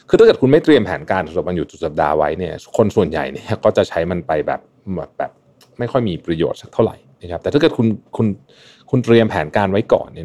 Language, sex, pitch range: Thai, male, 95-130 Hz